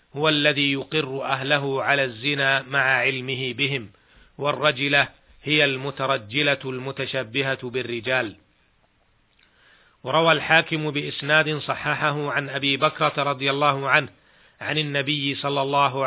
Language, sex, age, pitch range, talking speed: Arabic, male, 40-59, 130-145 Hz, 105 wpm